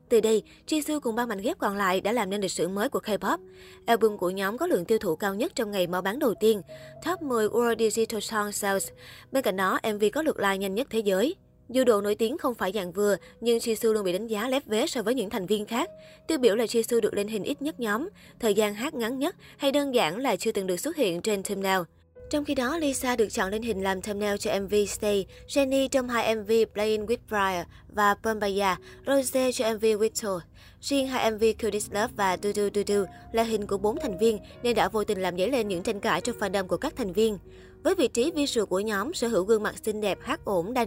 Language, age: Vietnamese, 20-39